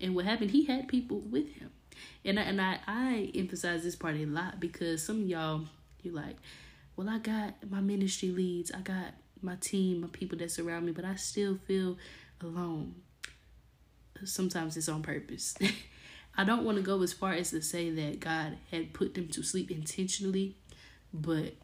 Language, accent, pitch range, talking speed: English, American, 155-195 Hz, 185 wpm